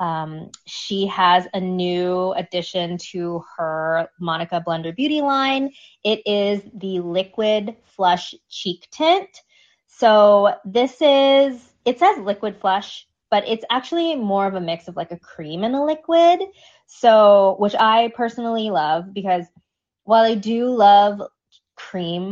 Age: 20-39